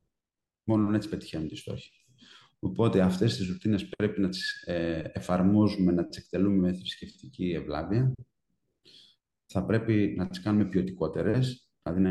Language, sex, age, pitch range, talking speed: Greek, male, 30-49, 95-125 Hz, 145 wpm